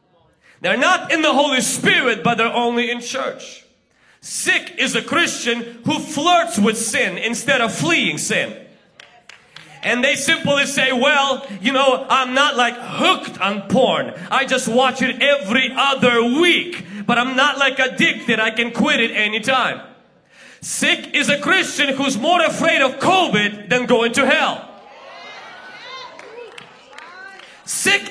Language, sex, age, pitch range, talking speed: English, male, 30-49, 235-315 Hz, 145 wpm